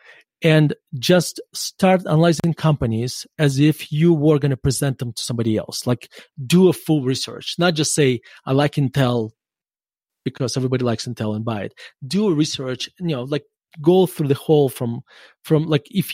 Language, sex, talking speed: English, male, 180 wpm